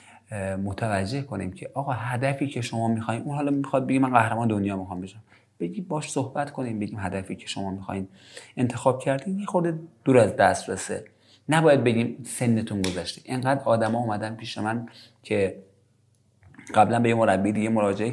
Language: Persian